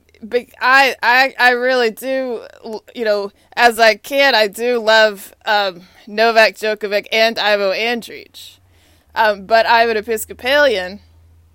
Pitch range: 210-260 Hz